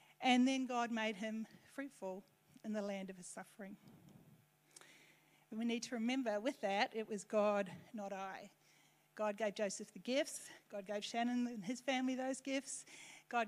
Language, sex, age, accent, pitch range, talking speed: English, female, 40-59, Australian, 200-235 Hz, 170 wpm